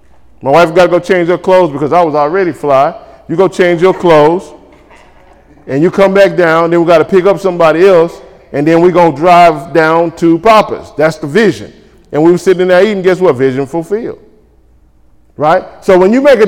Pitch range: 170-230 Hz